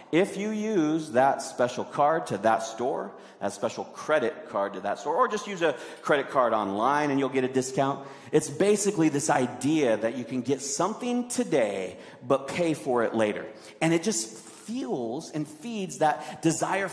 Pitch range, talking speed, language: 110-155 Hz, 180 wpm, English